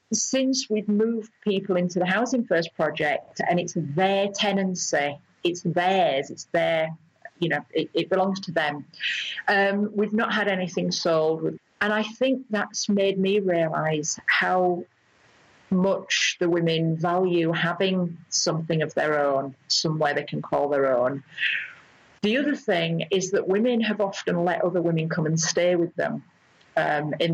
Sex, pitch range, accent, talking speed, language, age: female, 160-205 Hz, British, 155 wpm, English, 40-59